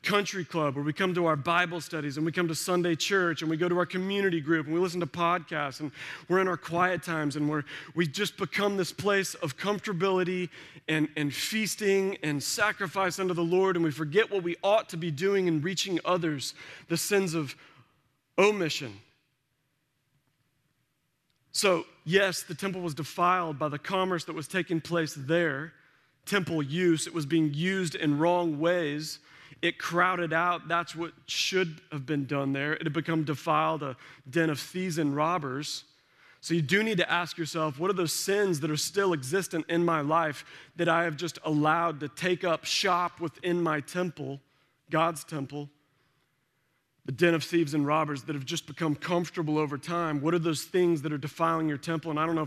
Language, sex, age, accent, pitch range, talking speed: English, male, 40-59, American, 150-180 Hz, 190 wpm